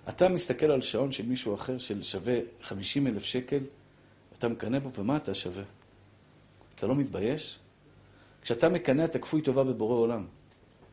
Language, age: Hebrew, 50-69